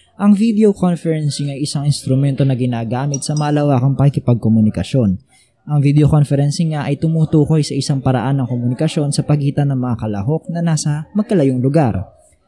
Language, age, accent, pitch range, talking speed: Filipino, 20-39, native, 130-165 Hz, 150 wpm